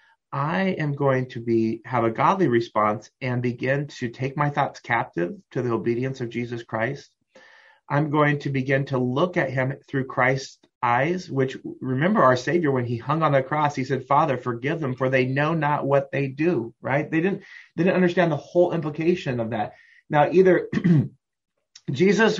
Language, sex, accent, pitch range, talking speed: English, male, American, 125-170 Hz, 185 wpm